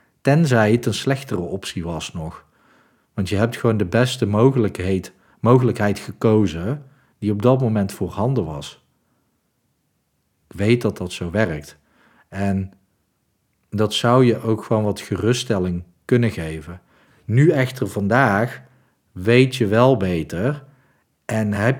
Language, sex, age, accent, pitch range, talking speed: Dutch, male, 50-69, Dutch, 95-120 Hz, 130 wpm